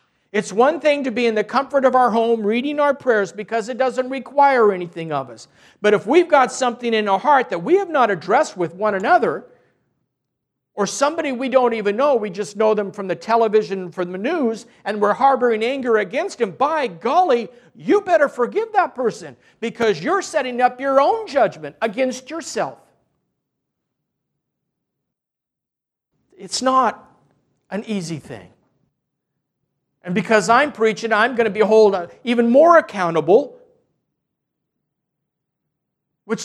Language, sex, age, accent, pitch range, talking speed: English, male, 50-69, American, 180-260 Hz, 155 wpm